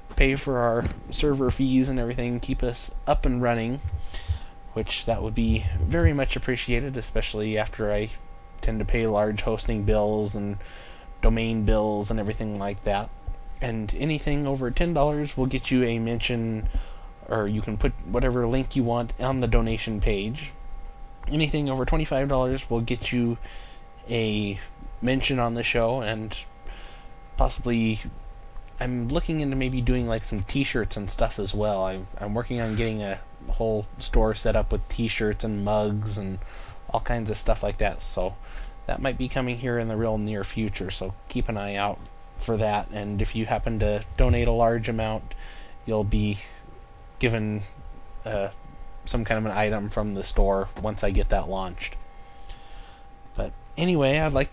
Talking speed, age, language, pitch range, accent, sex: 165 wpm, 20-39, English, 100-125 Hz, American, male